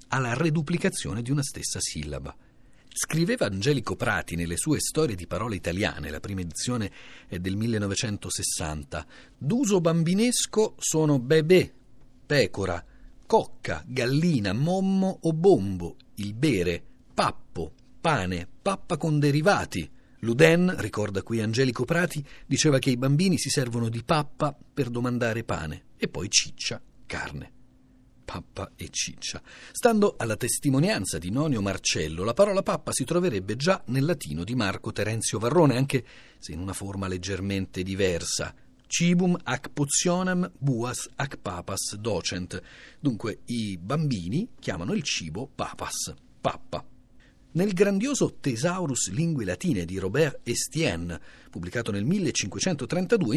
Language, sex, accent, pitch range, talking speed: Italian, male, native, 100-160 Hz, 125 wpm